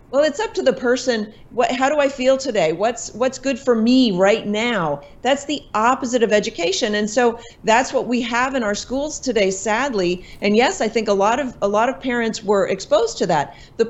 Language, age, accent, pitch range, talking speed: English, 40-59, American, 210-260 Hz, 220 wpm